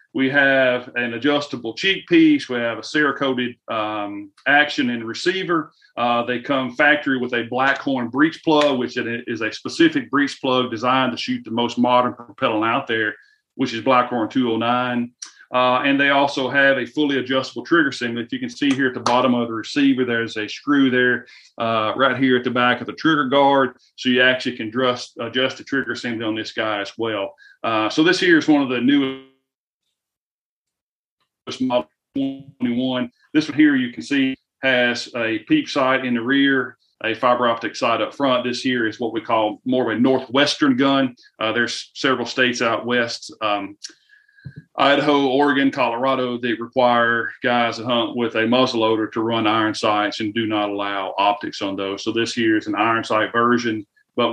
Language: English